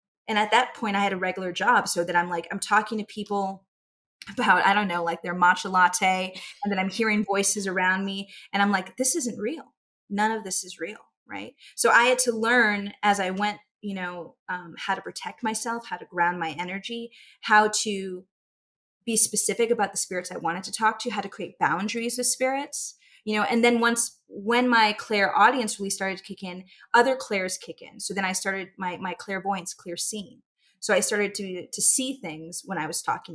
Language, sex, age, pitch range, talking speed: English, female, 20-39, 185-220 Hz, 215 wpm